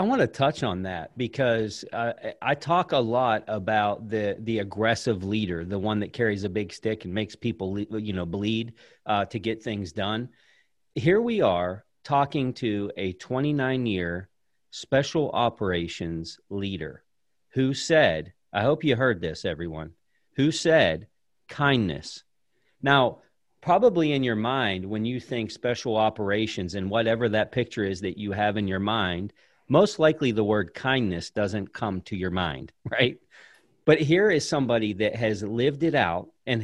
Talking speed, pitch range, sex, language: 160 wpm, 105-140 Hz, male, English